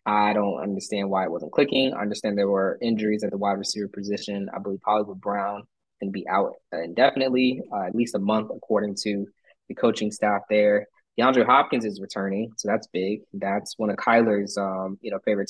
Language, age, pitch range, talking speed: English, 20-39, 100-115 Hz, 200 wpm